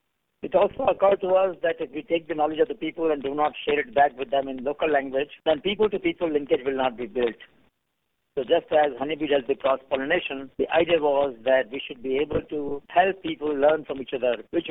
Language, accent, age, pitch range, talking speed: English, Indian, 50-69, 135-180 Hz, 225 wpm